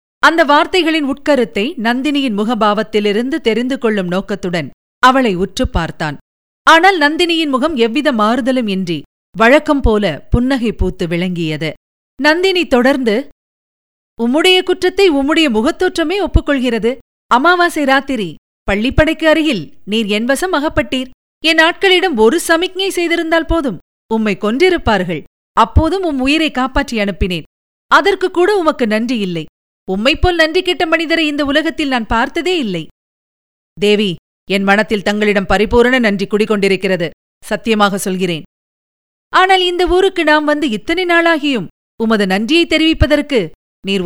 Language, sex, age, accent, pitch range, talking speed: Tamil, female, 50-69, native, 210-320 Hz, 110 wpm